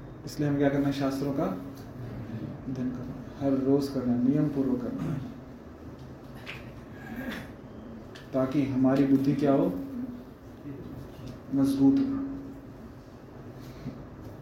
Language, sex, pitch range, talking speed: Hindi, male, 130-155 Hz, 85 wpm